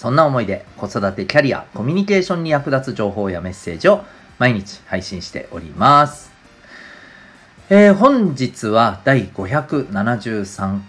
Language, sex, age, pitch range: Japanese, male, 40-59, 95-150 Hz